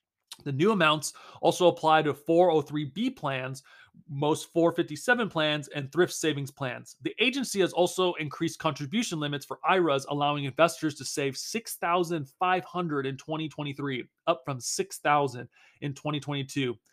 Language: English